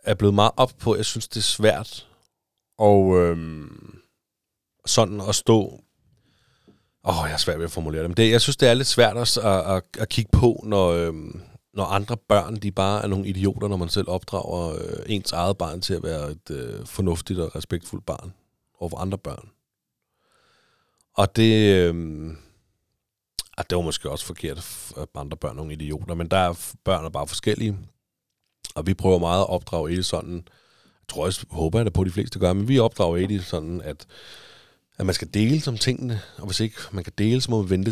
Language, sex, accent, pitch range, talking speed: Danish, male, native, 90-115 Hz, 205 wpm